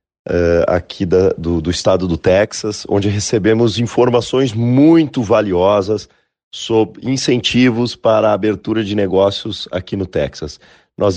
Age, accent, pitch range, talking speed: 40-59, Brazilian, 95-110 Hz, 120 wpm